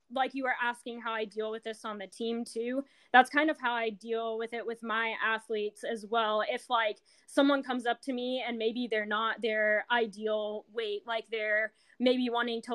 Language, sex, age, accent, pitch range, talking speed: English, female, 10-29, American, 210-240 Hz, 210 wpm